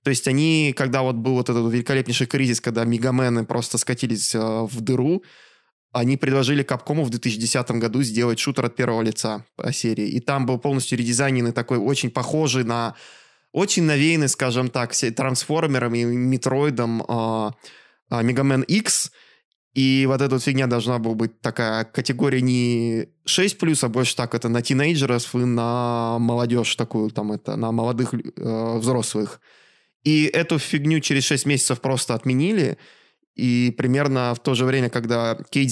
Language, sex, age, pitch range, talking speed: Russian, male, 20-39, 120-140 Hz, 150 wpm